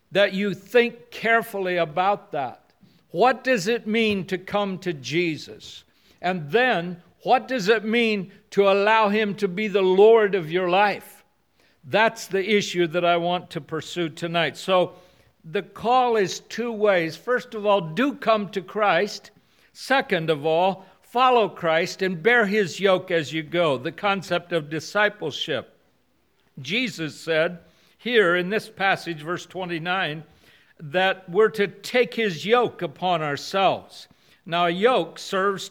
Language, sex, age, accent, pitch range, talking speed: English, male, 60-79, American, 175-220 Hz, 150 wpm